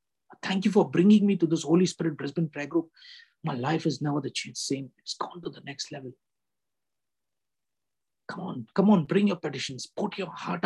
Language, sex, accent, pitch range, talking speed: English, male, Indian, 140-180 Hz, 190 wpm